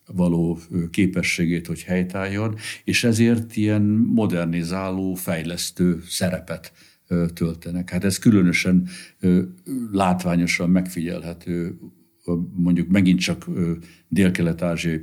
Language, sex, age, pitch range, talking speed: Hungarian, male, 60-79, 85-95 Hz, 80 wpm